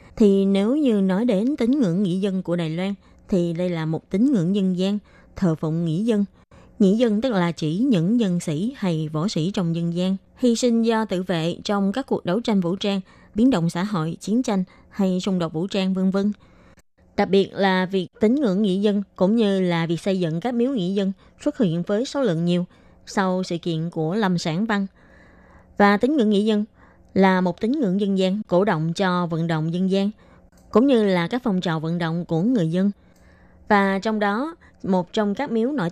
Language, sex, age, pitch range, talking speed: Vietnamese, female, 20-39, 175-220 Hz, 215 wpm